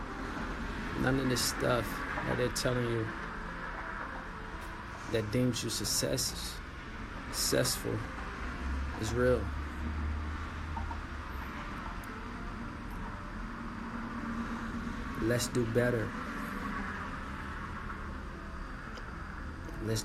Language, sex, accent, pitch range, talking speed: English, male, American, 75-115 Hz, 55 wpm